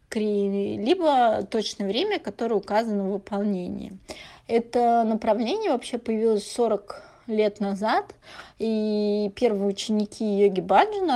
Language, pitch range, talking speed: Russian, 195-225 Hz, 100 wpm